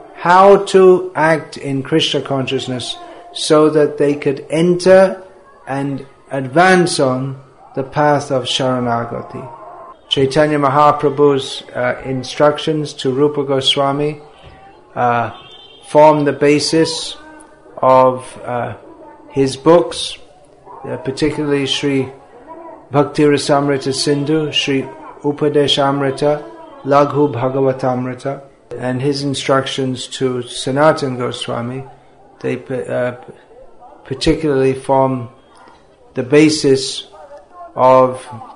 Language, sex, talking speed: English, male, 85 wpm